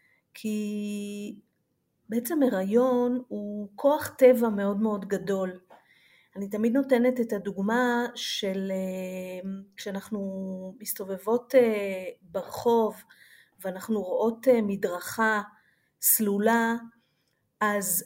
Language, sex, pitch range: Hebrew, female, 200-240 Hz